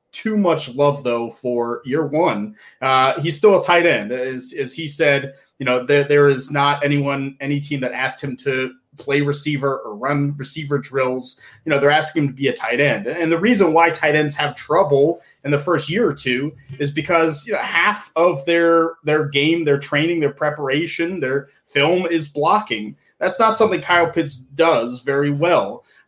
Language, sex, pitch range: English, male, 135-165 Hz